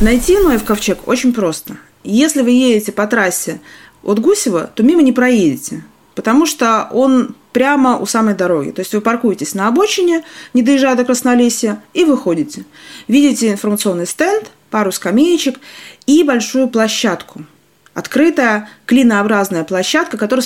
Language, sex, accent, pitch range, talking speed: Russian, female, native, 205-265 Hz, 140 wpm